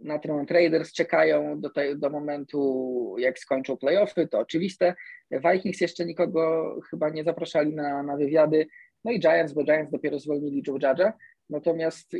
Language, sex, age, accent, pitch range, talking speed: Polish, male, 20-39, native, 140-170 Hz, 155 wpm